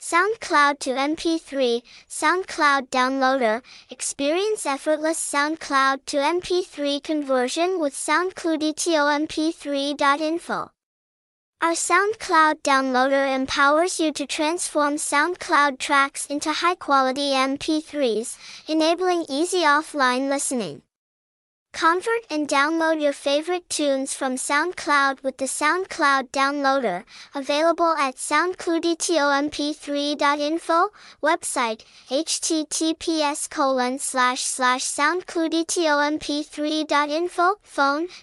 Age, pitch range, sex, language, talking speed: 10-29, 275-325 Hz, male, English, 85 wpm